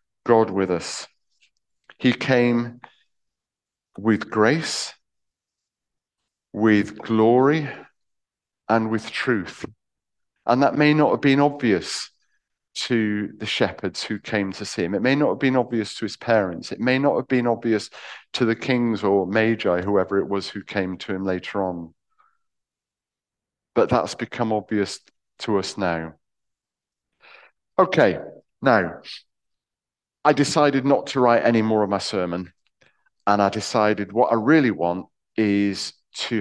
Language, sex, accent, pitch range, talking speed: English, male, British, 95-120 Hz, 140 wpm